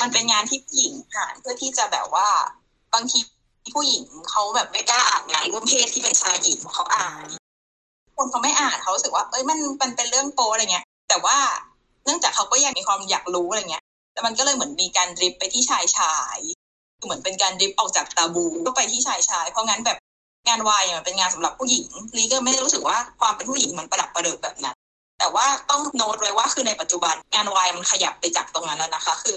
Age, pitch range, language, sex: 20-39, 180-260 Hz, Thai, female